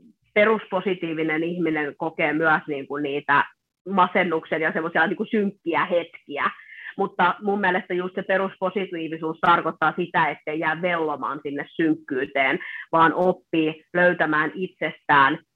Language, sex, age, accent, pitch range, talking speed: Finnish, female, 30-49, native, 160-255 Hz, 110 wpm